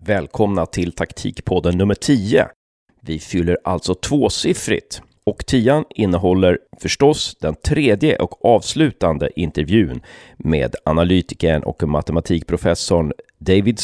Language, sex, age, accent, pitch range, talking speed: Swedish, male, 30-49, native, 85-115 Hz, 100 wpm